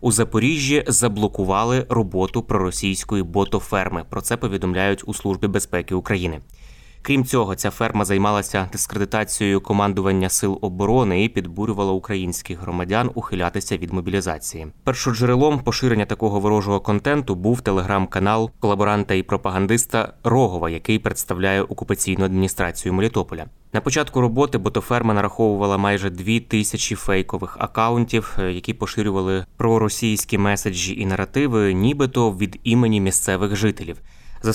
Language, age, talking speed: Ukrainian, 20-39, 115 wpm